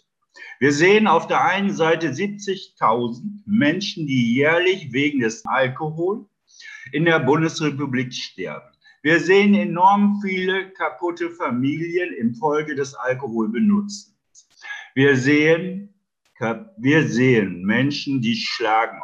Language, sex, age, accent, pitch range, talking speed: German, male, 50-69, German, 150-215 Hz, 105 wpm